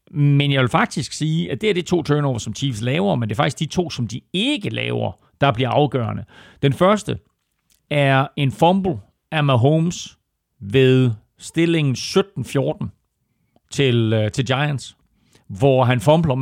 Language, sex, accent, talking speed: Danish, male, native, 155 wpm